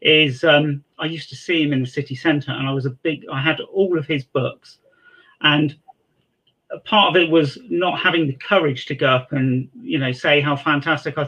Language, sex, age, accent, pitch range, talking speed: English, male, 40-59, British, 145-175 Hz, 220 wpm